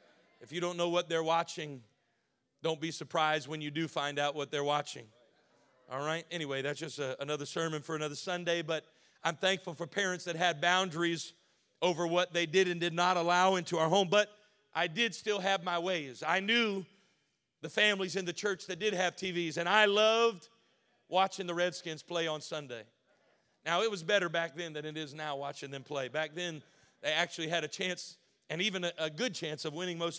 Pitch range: 165-200 Hz